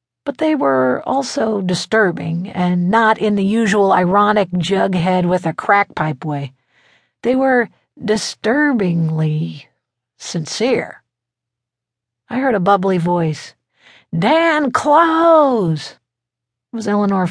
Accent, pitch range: American, 165-225 Hz